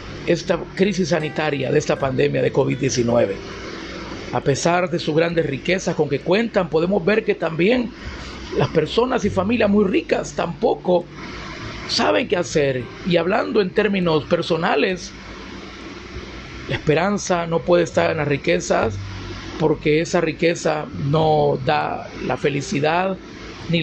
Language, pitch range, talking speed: Spanish, 140-185 Hz, 130 wpm